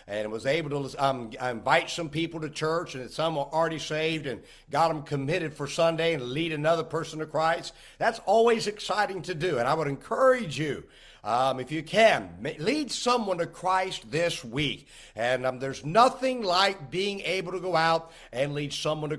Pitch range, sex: 145-195 Hz, male